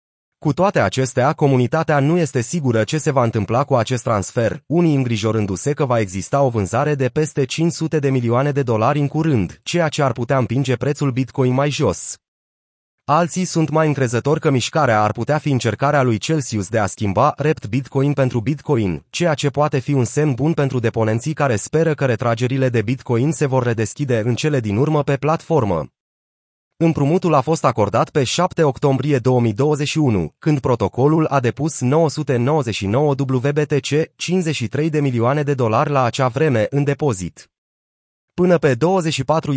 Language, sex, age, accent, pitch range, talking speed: Romanian, male, 30-49, native, 120-150 Hz, 165 wpm